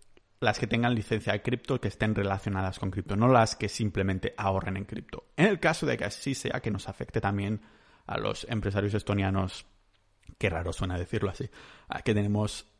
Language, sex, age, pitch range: Spanish, male, 30-49, 100-120 Hz